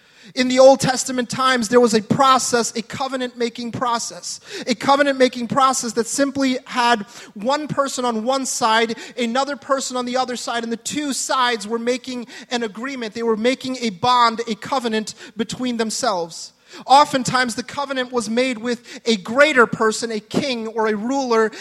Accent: American